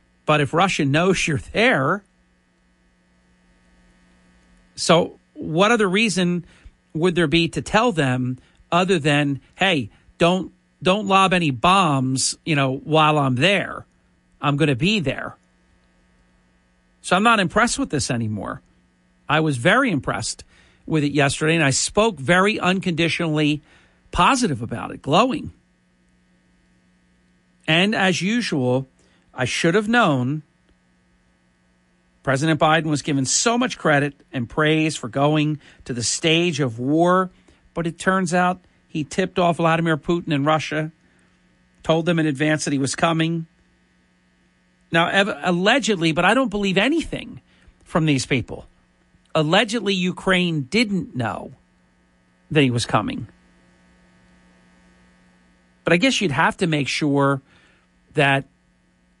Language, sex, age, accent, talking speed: English, male, 50-69, American, 130 wpm